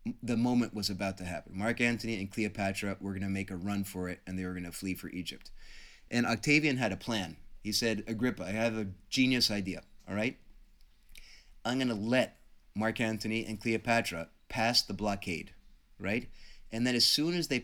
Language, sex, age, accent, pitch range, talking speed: English, male, 30-49, American, 100-120 Hz, 200 wpm